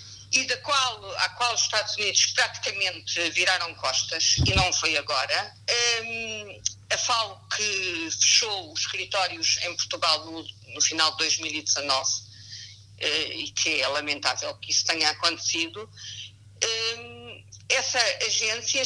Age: 50-69